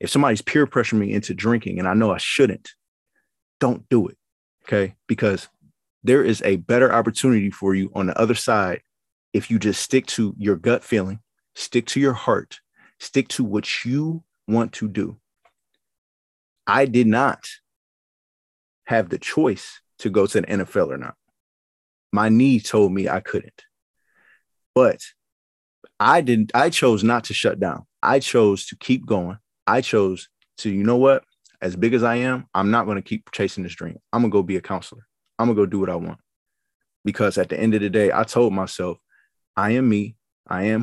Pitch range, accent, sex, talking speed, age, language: 95-120 Hz, American, male, 190 wpm, 30-49, English